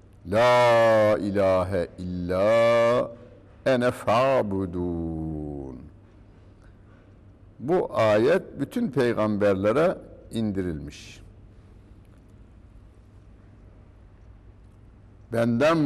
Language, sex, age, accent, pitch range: Turkish, male, 60-79, native, 90-115 Hz